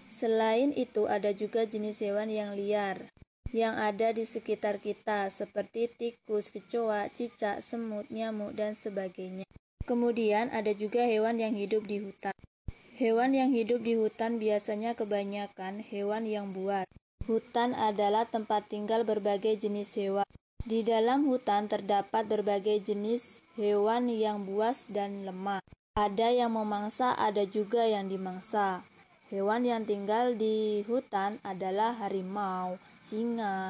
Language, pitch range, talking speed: Indonesian, 205-230 Hz, 130 wpm